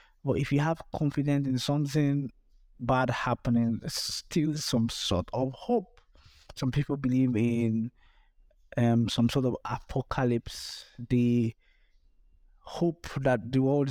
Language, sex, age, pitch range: English, male, 20-39, 115-135 Hz